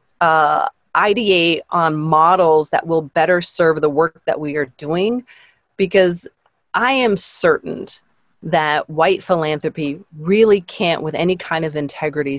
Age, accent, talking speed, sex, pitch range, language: 30-49, American, 135 wpm, female, 150-185 Hz, English